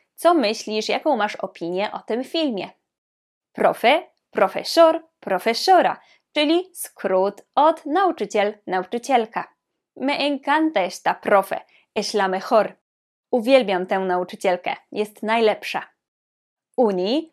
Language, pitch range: Polish, 200-305 Hz